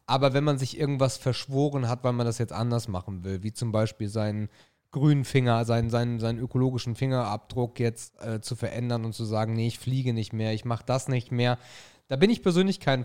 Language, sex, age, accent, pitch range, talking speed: German, male, 30-49, German, 115-140 Hz, 210 wpm